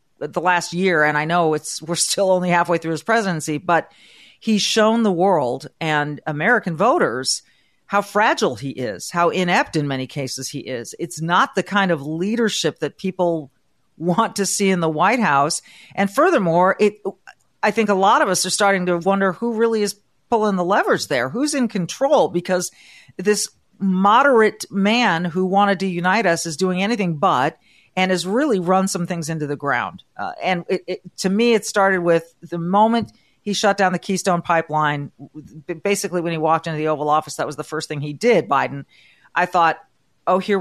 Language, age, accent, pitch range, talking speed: English, 40-59, American, 160-205 Hz, 190 wpm